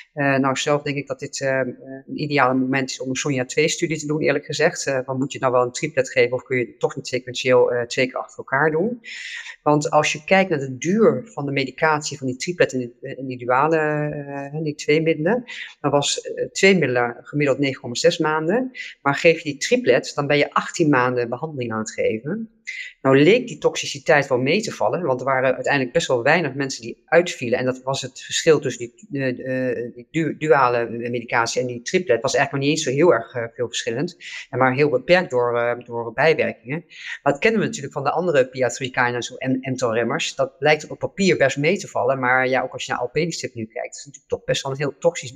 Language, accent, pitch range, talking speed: Dutch, Dutch, 130-170 Hz, 235 wpm